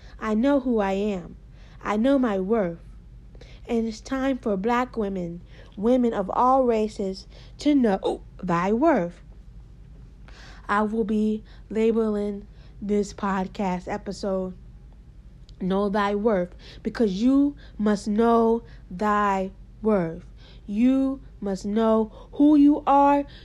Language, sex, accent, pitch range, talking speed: English, female, American, 205-285 Hz, 115 wpm